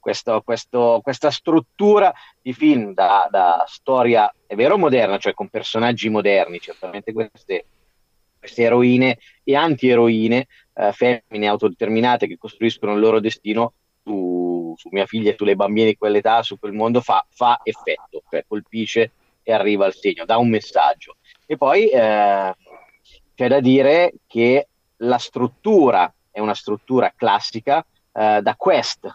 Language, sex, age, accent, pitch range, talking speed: Italian, male, 30-49, native, 105-135 Hz, 145 wpm